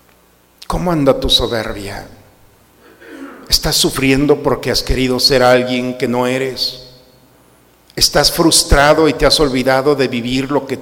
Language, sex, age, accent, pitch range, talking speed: Spanish, male, 50-69, Mexican, 120-140 Hz, 135 wpm